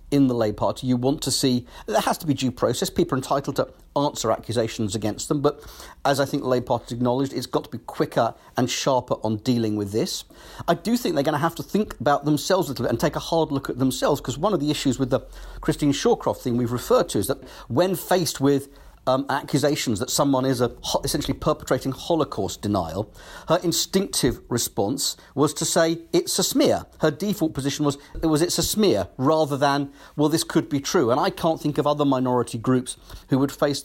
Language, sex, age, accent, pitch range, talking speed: English, male, 50-69, British, 135-160 Hz, 225 wpm